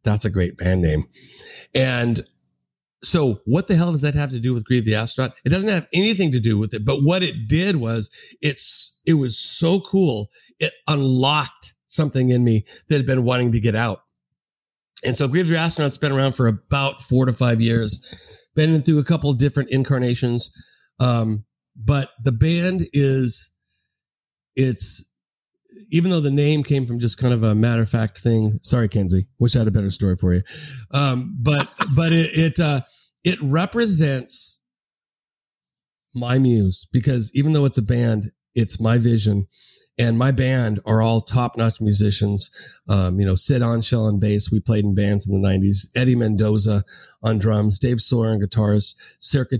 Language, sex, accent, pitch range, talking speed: English, male, American, 105-140 Hz, 175 wpm